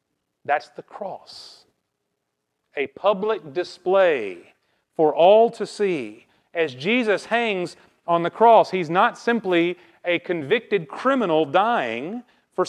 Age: 40-59